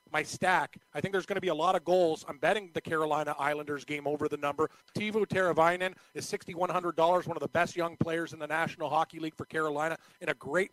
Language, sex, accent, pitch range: English, male, American, 160-190 Hz